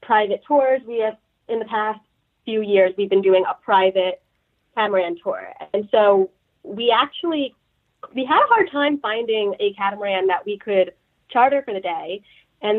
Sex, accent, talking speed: female, American, 170 wpm